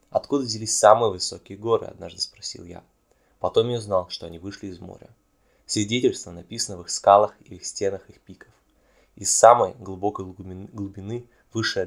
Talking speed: 160 wpm